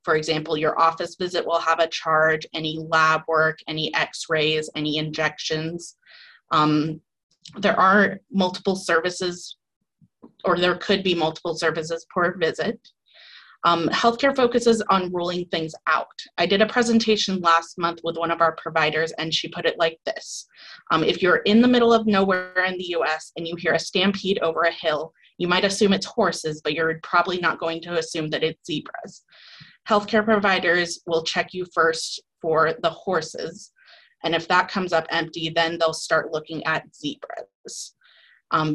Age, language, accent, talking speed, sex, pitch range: 20-39, English, American, 170 wpm, female, 160-185 Hz